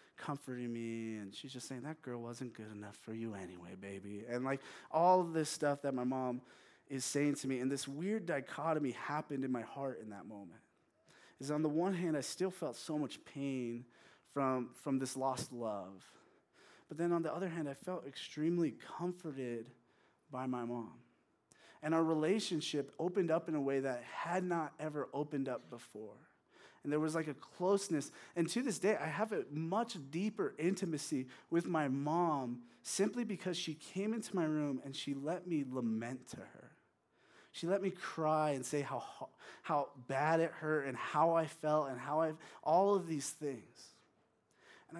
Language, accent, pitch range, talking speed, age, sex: English, American, 135-175 Hz, 185 wpm, 20-39, male